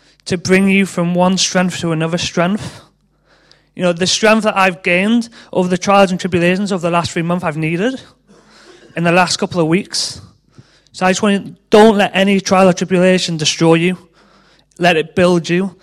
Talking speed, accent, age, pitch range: 195 wpm, British, 30-49, 170-200 Hz